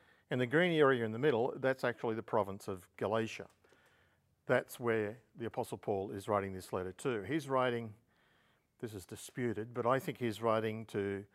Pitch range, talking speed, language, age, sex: 110-140 Hz, 180 wpm, English, 50-69, male